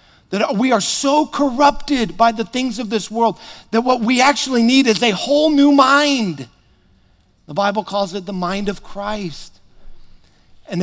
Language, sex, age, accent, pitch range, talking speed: English, male, 50-69, American, 175-225 Hz, 165 wpm